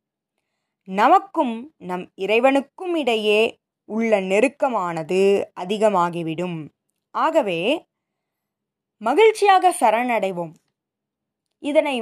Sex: female